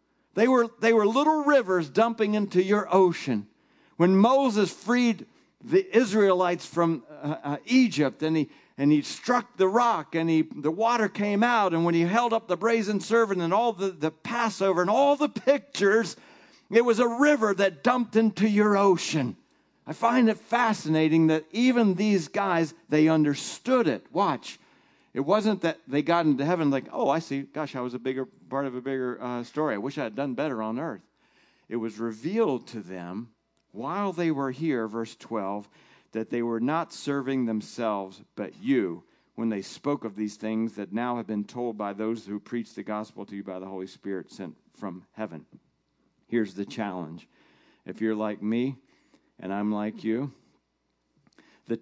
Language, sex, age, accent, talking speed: English, male, 50-69, American, 180 wpm